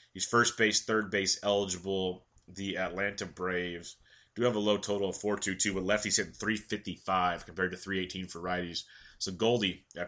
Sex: male